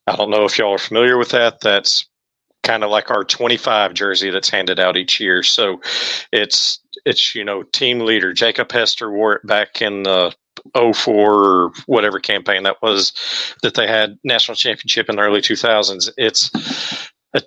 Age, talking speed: 40-59, 180 wpm